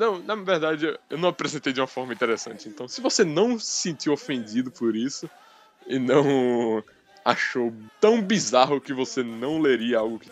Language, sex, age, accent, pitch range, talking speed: Portuguese, male, 10-29, Brazilian, 125-175 Hz, 175 wpm